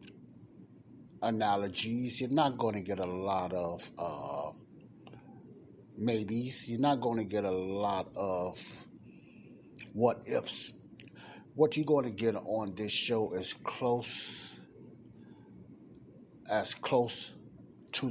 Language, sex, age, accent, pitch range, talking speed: English, male, 60-79, American, 100-120 Hz, 110 wpm